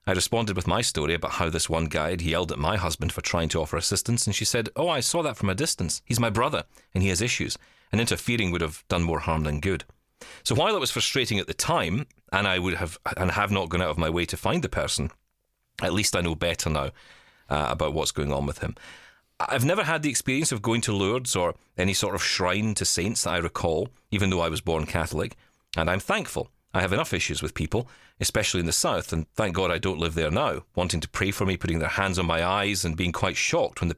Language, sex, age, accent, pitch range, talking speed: English, male, 40-59, British, 85-105 Hz, 255 wpm